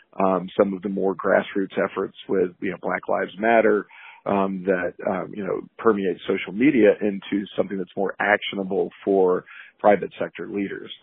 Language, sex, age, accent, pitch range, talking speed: English, male, 40-59, American, 95-110 Hz, 165 wpm